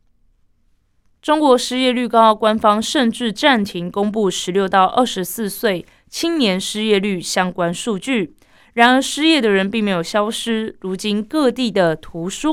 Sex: female